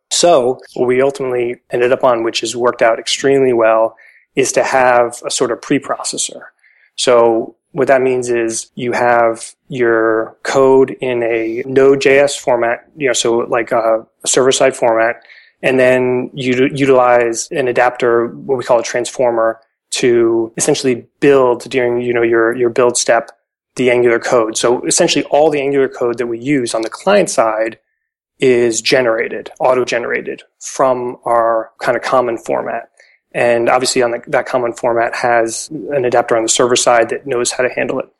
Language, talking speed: English, 165 wpm